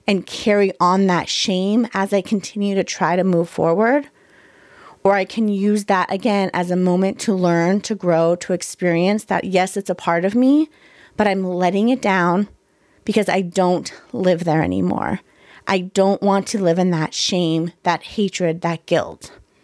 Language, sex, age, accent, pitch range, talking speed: English, female, 30-49, American, 175-205 Hz, 175 wpm